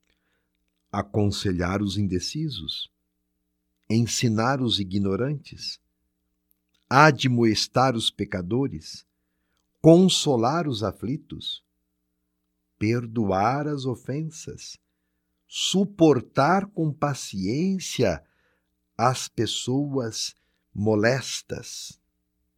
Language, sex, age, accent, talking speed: Portuguese, male, 50-69, Brazilian, 55 wpm